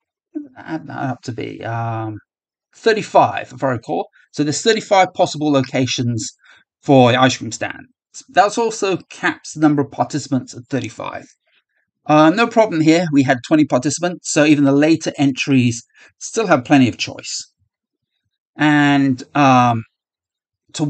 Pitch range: 130-160 Hz